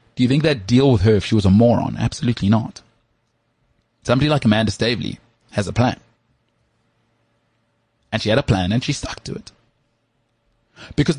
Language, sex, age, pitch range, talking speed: English, male, 30-49, 110-130 Hz, 165 wpm